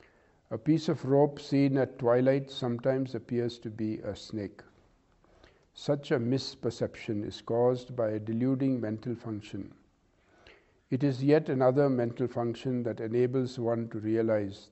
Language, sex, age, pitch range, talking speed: English, male, 50-69, 110-130 Hz, 140 wpm